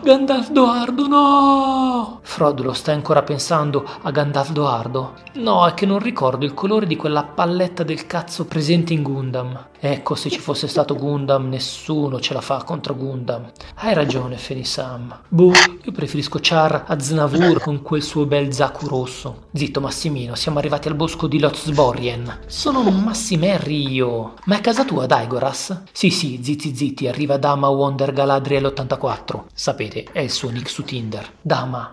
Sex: male